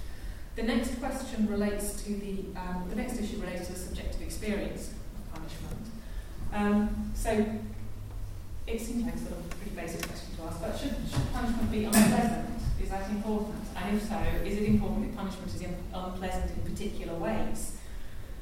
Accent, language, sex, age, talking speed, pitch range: British, English, female, 30-49, 170 wpm, 165-210 Hz